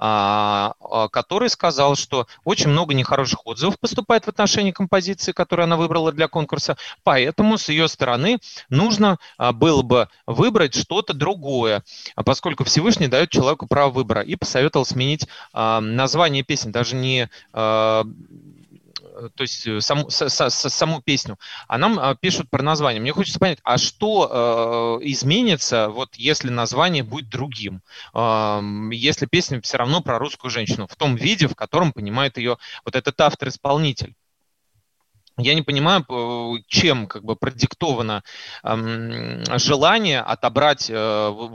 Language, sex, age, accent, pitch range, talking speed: Russian, male, 30-49, native, 115-155 Hz, 130 wpm